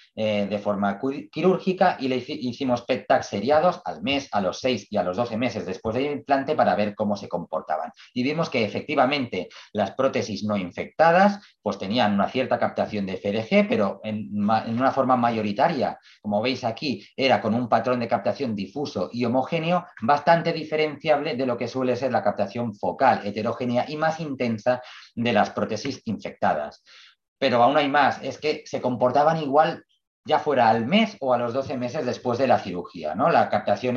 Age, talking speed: 40-59, 180 wpm